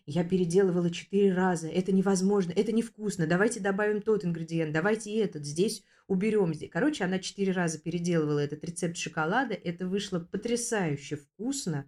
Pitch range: 165-210 Hz